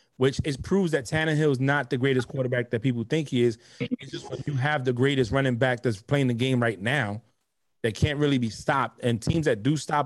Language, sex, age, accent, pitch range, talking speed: English, male, 30-49, American, 125-160 Hz, 240 wpm